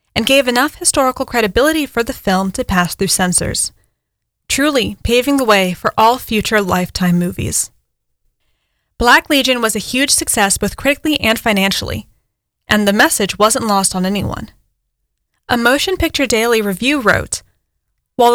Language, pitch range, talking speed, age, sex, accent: English, 195-265 Hz, 145 wpm, 10-29, female, American